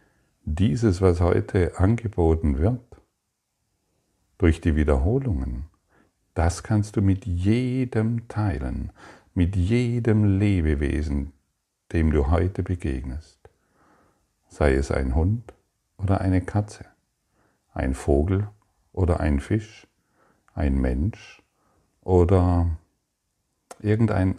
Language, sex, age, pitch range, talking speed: German, male, 50-69, 85-105 Hz, 90 wpm